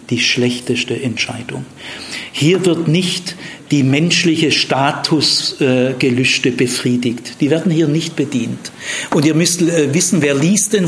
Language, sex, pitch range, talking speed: German, male, 145-185 Hz, 130 wpm